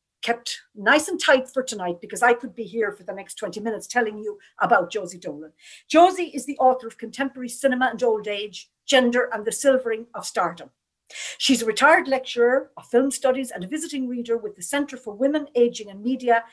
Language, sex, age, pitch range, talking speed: English, female, 60-79, 215-260 Hz, 205 wpm